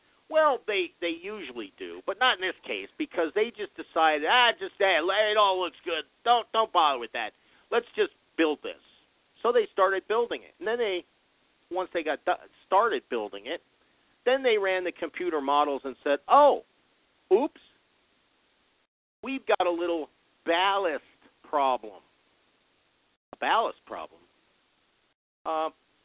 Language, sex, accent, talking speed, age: English, male, American, 150 wpm, 50-69